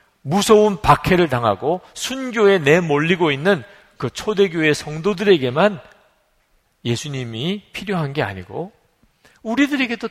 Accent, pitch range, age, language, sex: native, 120-190 Hz, 40-59, Korean, male